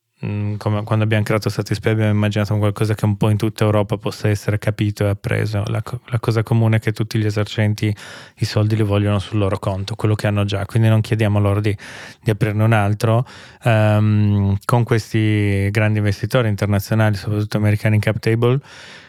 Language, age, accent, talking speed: Italian, 20-39, native, 190 wpm